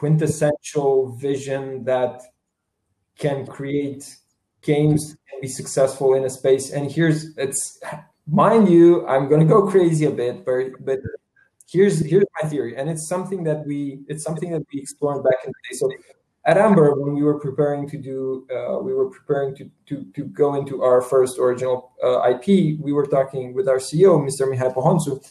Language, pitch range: Romanian, 135-170 Hz